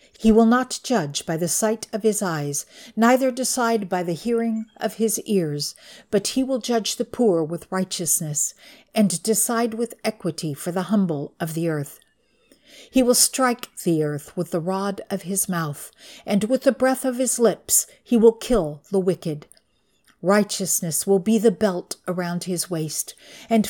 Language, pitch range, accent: English, 170-230 Hz, American